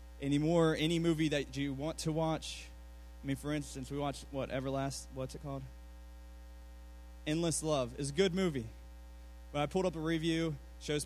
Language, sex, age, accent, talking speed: English, male, 20-39, American, 180 wpm